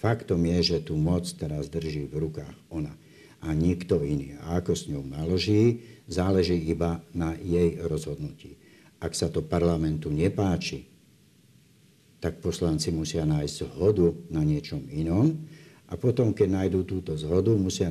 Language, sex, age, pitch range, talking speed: Slovak, male, 60-79, 80-105 Hz, 145 wpm